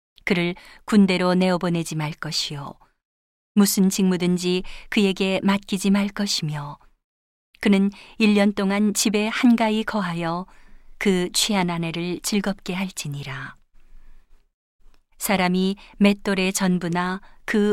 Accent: native